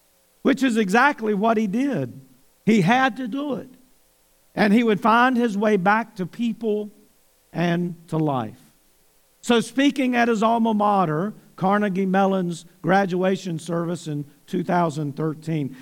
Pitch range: 140-215 Hz